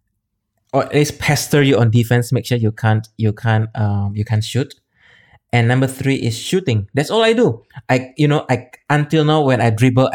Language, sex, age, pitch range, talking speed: English, male, 20-39, 110-140 Hz, 205 wpm